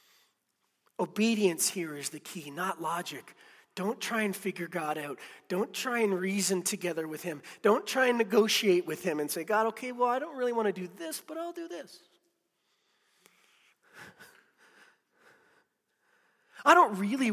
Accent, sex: American, male